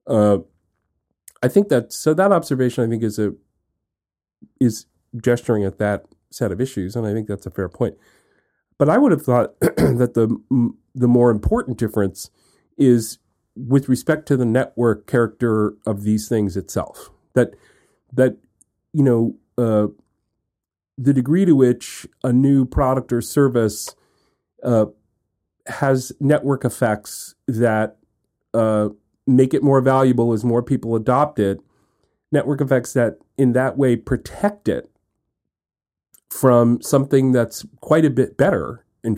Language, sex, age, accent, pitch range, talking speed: English, male, 40-59, American, 105-130 Hz, 140 wpm